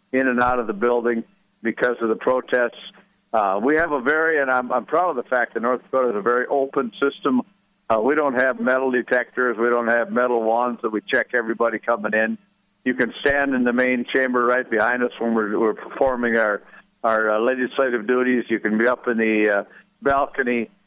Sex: male